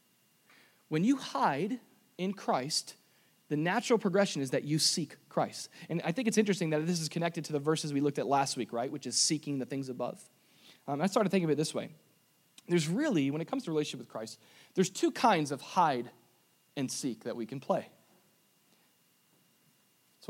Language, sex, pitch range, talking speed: English, male, 130-185 Hz, 195 wpm